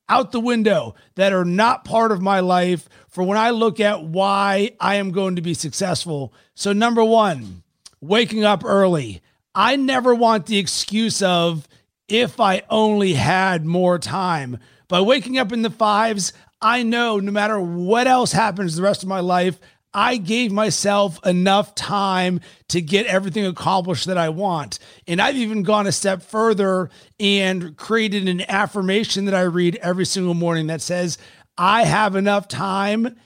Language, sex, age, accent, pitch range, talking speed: English, male, 40-59, American, 175-220 Hz, 170 wpm